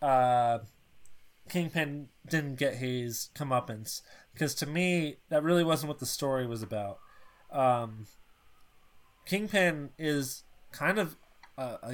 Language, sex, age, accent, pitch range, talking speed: English, male, 20-39, American, 125-155 Hz, 115 wpm